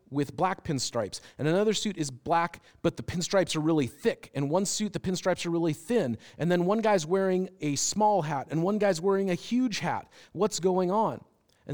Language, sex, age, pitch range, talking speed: English, male, 40-59, 120-175 Hz, 210 wpm